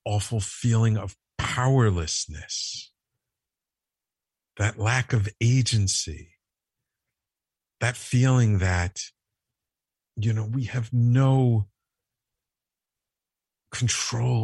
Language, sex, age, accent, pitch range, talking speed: English, male, 50-69, American, 90-110 Hz, 70 wpm